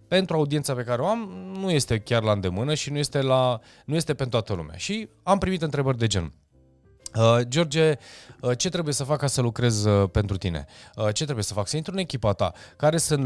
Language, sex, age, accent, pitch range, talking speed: Romanian, male, 20-39, native, 105-150 Hz, 220 wpm